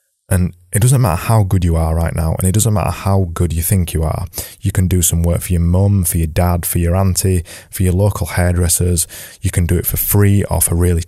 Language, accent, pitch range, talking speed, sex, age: English, British, 85-110 Hz, 255 wpm, male, 20-39